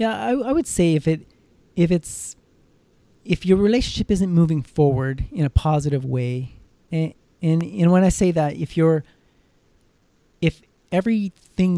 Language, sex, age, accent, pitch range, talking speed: English, male, 30-49, American, 135-165 Hz, 155 wpm